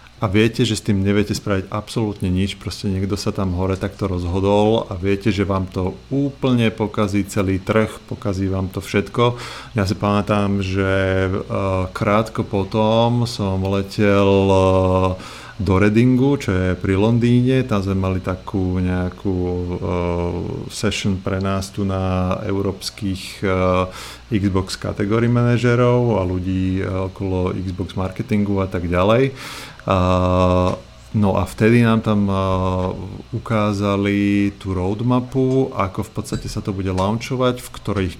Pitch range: 95-110 Hz